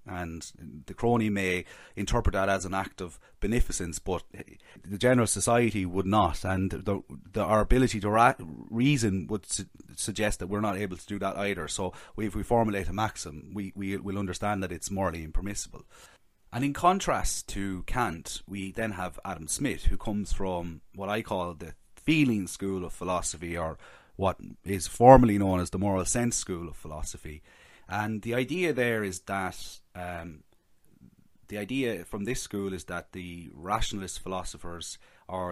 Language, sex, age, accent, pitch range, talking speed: English, male, 30-49, Irish, 90-105 Hz, 160 wpm